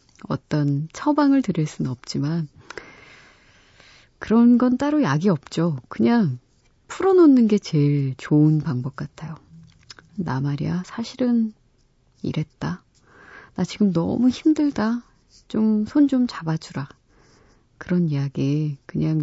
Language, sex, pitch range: Korean, female, 140-205 Hz